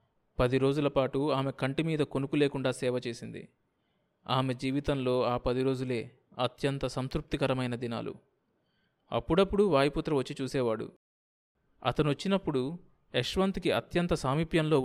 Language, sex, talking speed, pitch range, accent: Telugu, male, 110 wpm, 125-155 Hz, native